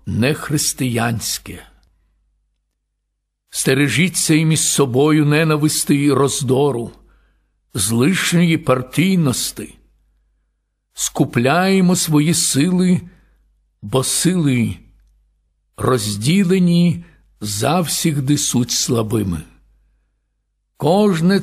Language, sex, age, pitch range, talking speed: Ukrainian, male, 60-79, 115-155 Hz, 60 wpm